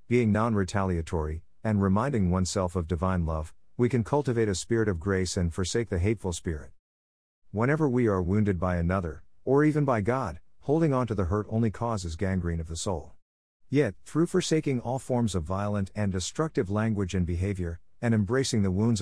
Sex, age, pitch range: male, 50-69, 85-115 Hz